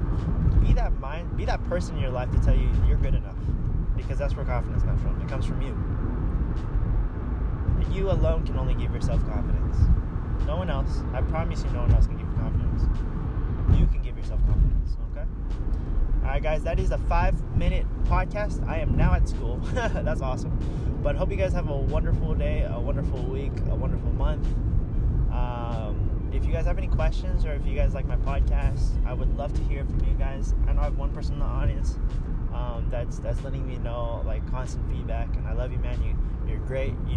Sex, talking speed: male, 210 wpm